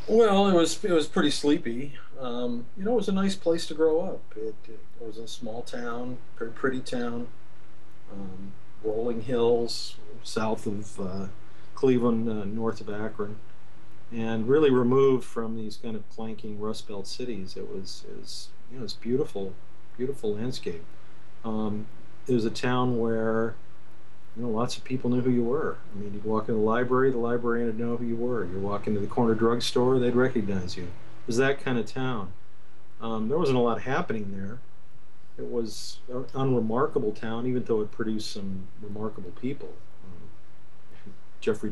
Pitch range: 110-125 Hz